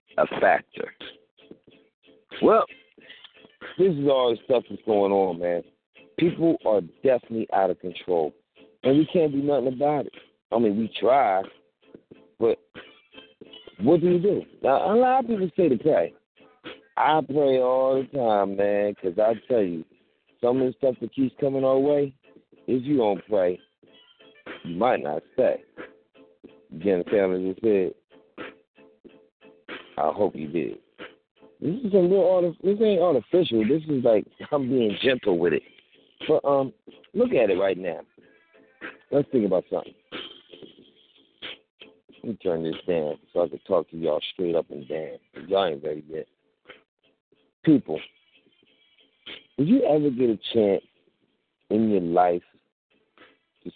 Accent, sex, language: American, male, English